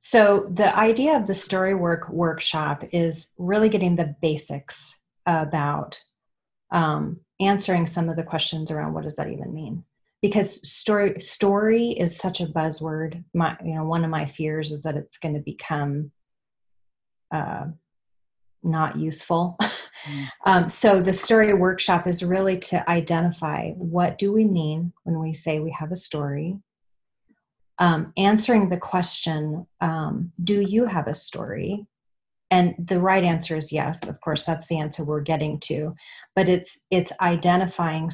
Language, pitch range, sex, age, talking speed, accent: English, 155-190 Hz, female, 30-49, 150 wpm, American